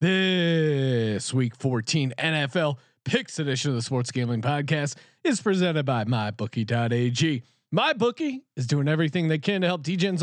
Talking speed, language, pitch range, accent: 140 wpm, English, 130-180 Hz, American